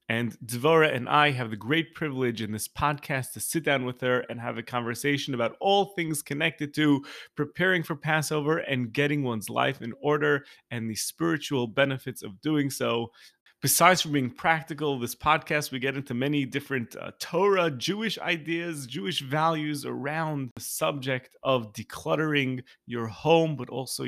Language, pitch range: English, 115-145 Hz